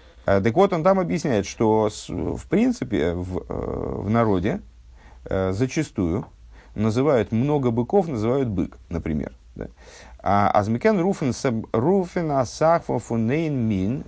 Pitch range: 95-125 Hz